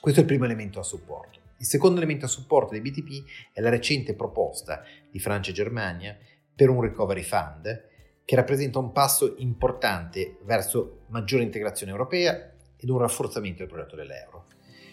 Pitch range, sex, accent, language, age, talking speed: 100-130 Hz, male, native, Italian, 30-49, 165 wpm